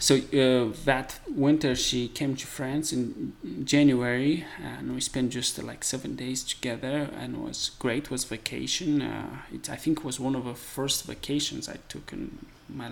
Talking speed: 190 wpm